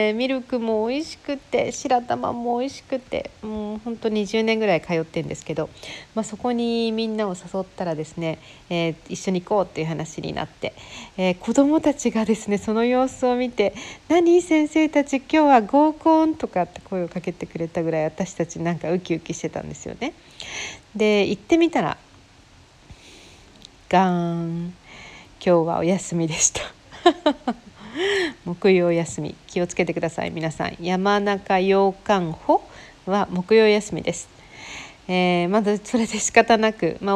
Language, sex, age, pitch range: Japanese, female, 40-59, 175-235 Hz